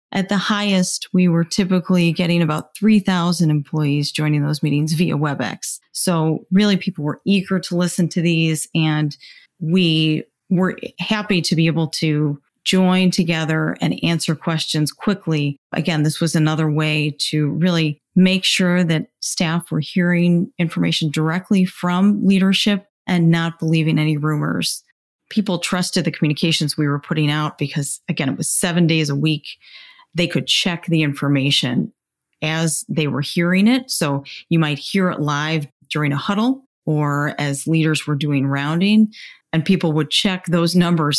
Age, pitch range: 30-49, 150-185 Hz